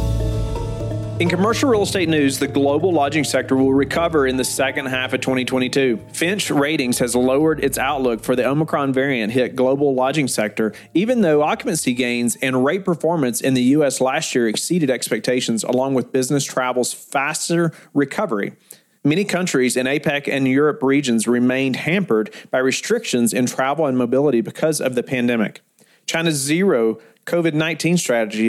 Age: 40-59